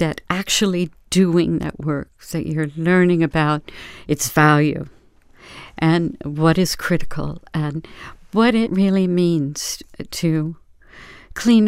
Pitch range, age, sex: 160-180 Hz, 60-79, female